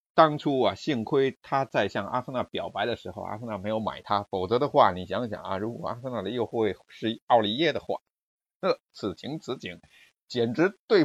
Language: Chinese